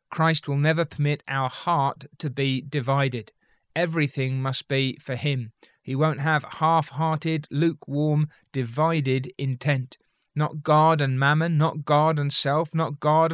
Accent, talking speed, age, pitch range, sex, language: British, 140 wpm, 30-49, 140-165 Hz, male, English